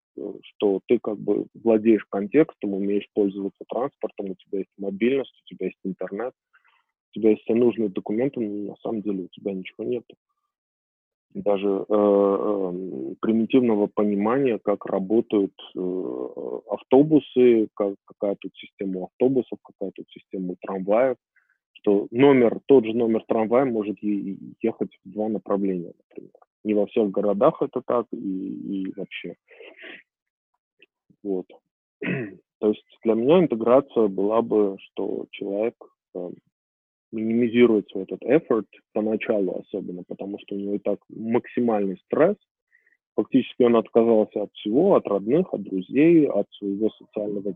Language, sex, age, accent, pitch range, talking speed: Russian, male, 20-39, native, 100-120 Hz, 135 wpm